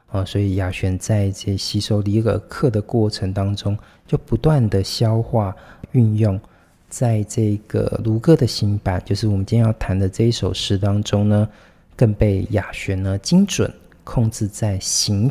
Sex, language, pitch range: male, Chinese, 100-115 Hz